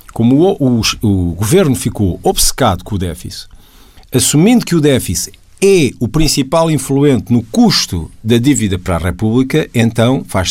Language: Portuguese